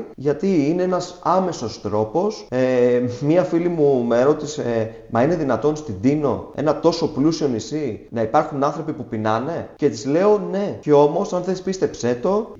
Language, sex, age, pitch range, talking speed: Greek, male, 30-49, 120-180 Hz, 170 wpm